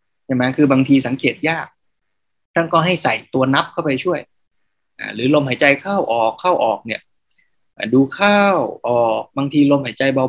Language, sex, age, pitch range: Thai, male, 20-39, 120-160 Hz